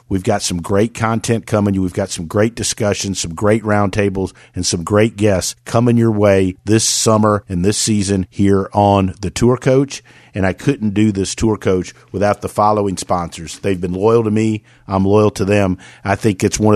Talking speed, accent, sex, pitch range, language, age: 195 wpm, American, male, 95-110 Hz, English, 50-69